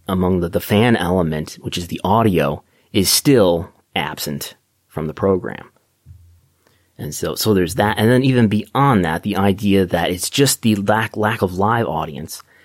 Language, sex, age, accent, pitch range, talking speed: English, male, 30-49, American, 90-105 Hz, 170 wpm